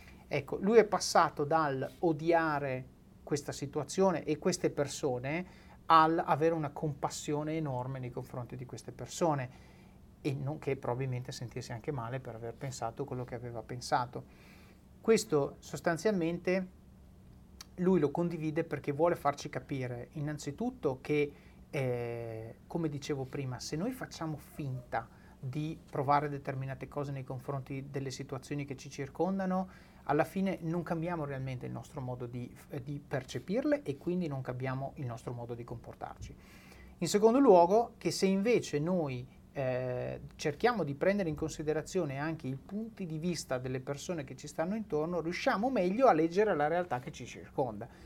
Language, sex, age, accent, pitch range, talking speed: Italian, male, 30-49, native, 130-165 Hz, 145 wpm